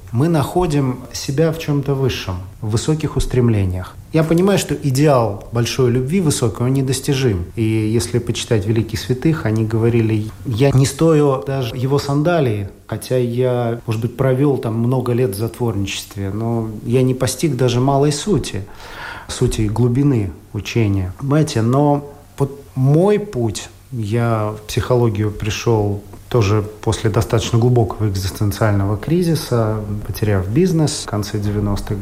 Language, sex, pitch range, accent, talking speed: Russian, male, 105-135 Hz, native, 130 wpm